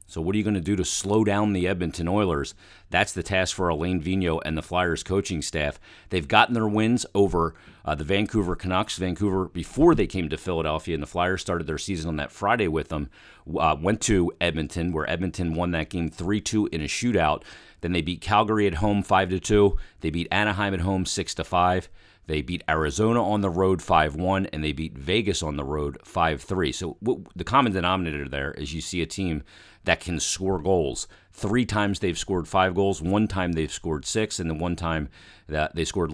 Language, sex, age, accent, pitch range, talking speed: English, male, 40-59, American, 80-100 Hz, 205 wpm